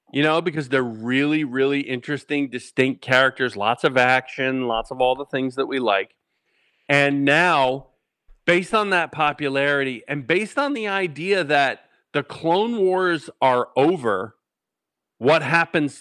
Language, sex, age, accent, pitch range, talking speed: English, male, 40-59, American, 125-165 Hz, 145 wpm